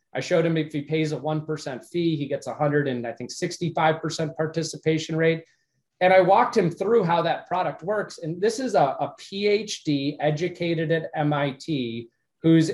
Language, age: English, 30-49